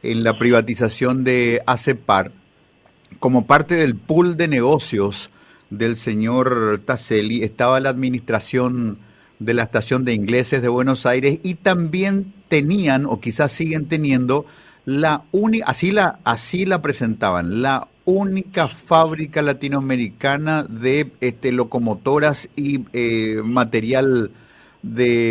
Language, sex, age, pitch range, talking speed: Spanish, male, 50-69, 120-150 Hz, 120 wpm